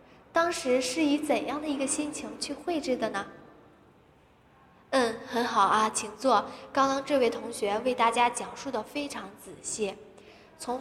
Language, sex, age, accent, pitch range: Chinese, female, 10-29, native, 220-275 Hz